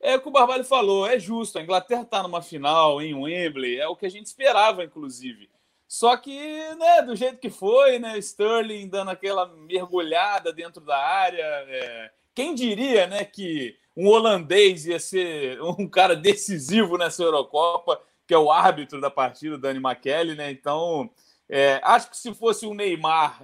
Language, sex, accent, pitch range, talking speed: Portuguese, male, Brazilian, 155-235 Hz, 175 wpm